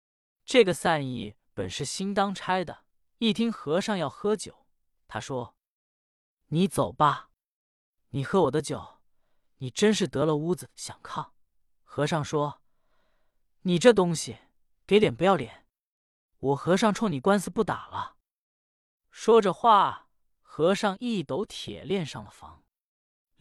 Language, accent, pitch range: Chinese, native, 130-200 Hz